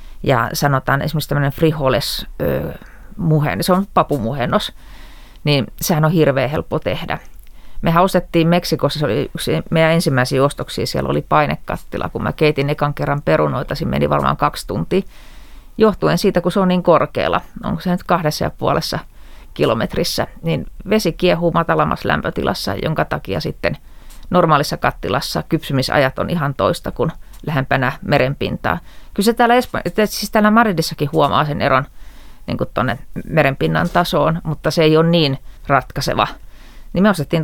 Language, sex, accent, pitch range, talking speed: Finnish, female, native, 145-180 Hz, 145 wpm